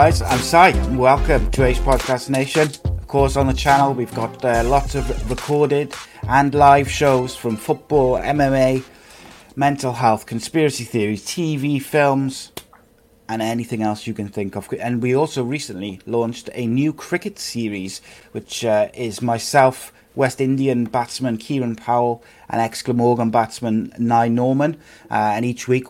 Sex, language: male, English